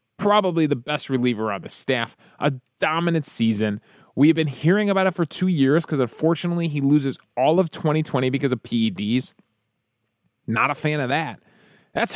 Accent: American